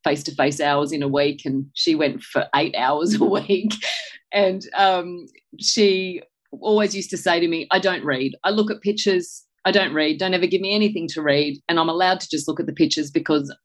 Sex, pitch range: female, 150-190 Hz